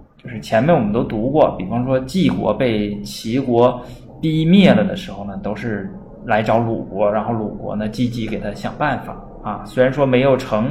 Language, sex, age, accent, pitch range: Chinese, male, 20-39, native, 110-140 Hz